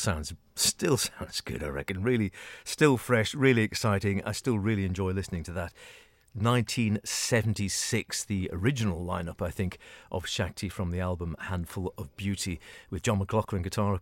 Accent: British